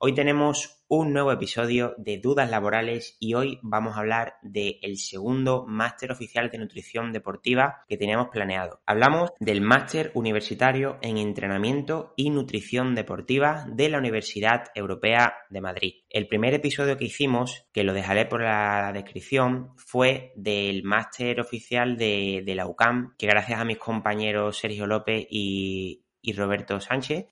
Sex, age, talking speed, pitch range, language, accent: male, 20-39, 150 wpm, 105-125 Hz, Spanish, Spanish